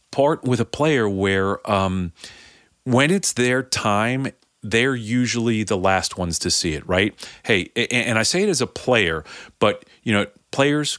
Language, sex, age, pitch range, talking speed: English, male, 40-59, 100-130 Hz, 170 wpm